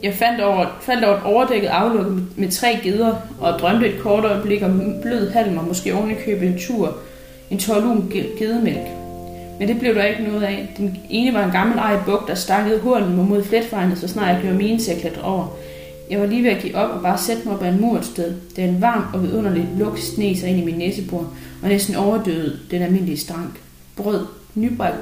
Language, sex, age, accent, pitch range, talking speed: Danish, female, 30-49, native, 175-220 Hz, 215 wpm